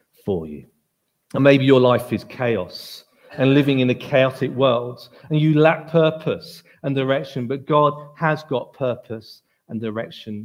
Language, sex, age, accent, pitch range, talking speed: English, male, 40-59, British, 140-210 Hz, 155 wpm